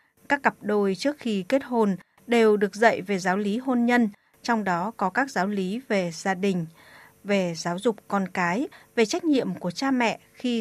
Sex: female